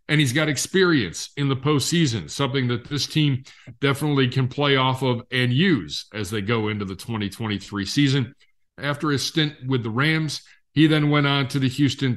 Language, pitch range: English, 115-145 Hz